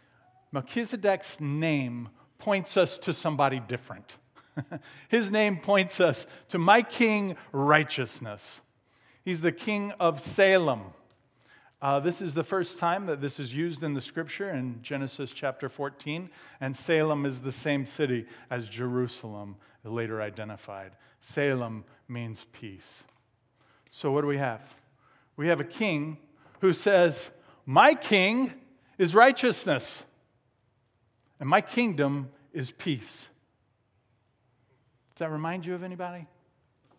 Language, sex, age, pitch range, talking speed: English, male, 40-59, 130-180 Hz, 125 wpm